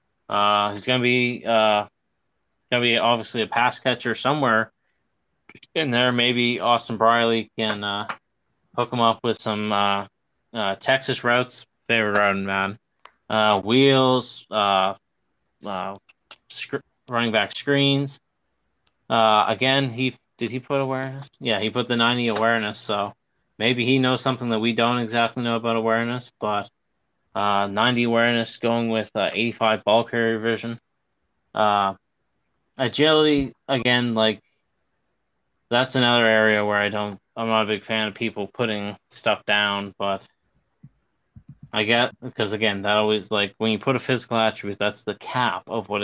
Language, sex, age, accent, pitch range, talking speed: English, male, 20-39, American, 105-120 Hz, 150 wpm